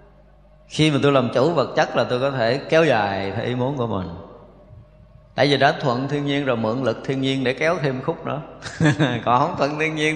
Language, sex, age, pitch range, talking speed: Vietnamese, male, 20-39, 125-155 Hz, 230 wpm